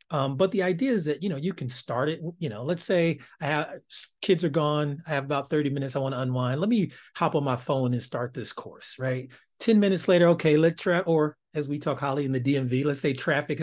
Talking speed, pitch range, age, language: 255 wpm, 130-165 Hz, 30-49, English